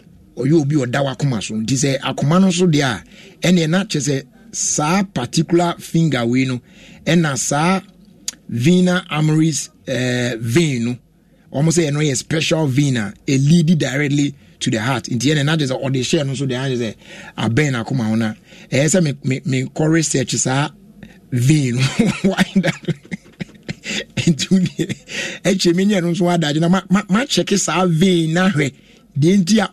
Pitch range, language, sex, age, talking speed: 135-185 Hz, English, male, 60-79, 145 wpm